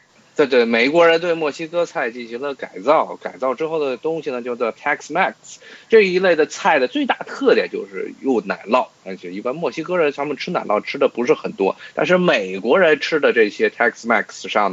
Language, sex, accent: Chinese, male, native